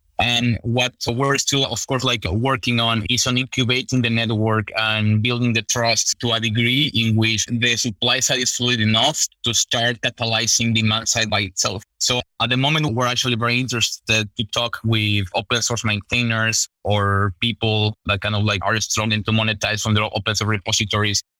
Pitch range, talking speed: 110-125 Hz, 180 wpm